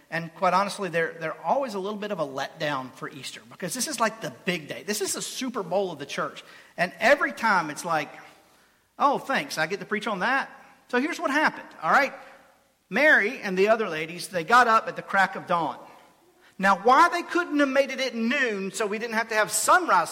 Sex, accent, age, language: male, American, 50-69, English